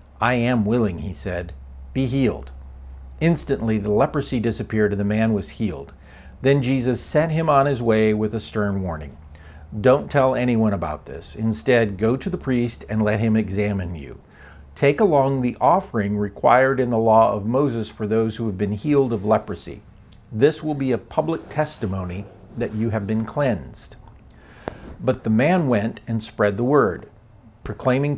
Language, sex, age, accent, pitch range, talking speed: English, male, 50-69, American, 105-130 Hz, 170 wpm